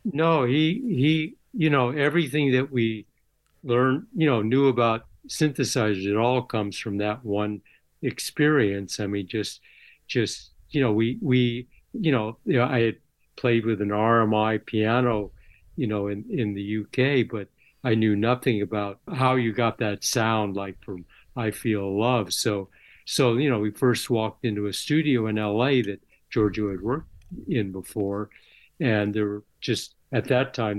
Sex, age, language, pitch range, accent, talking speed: male, 60-79, English, 105-125 Hz, American, 165 wpm